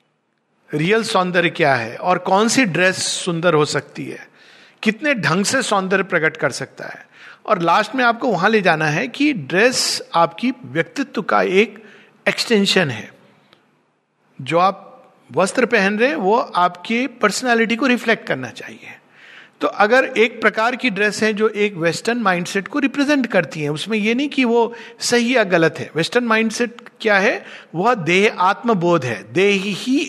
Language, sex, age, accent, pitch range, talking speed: Hindi, male, 50-69, native, 180-245 Hz, 170 wpm